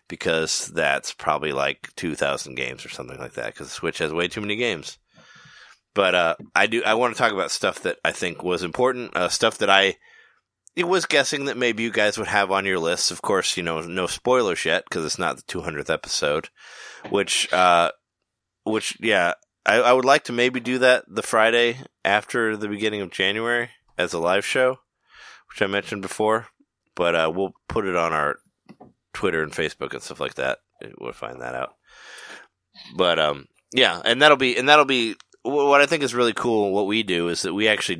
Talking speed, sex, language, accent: 205 wpm, male, English, American